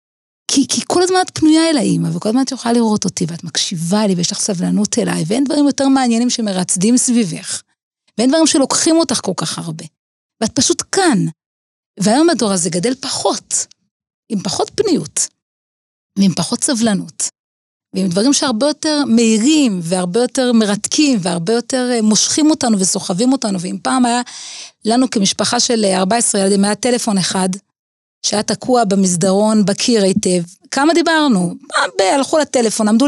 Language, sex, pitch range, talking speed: Hebrew, female, 195-265 Hz, 150 wpm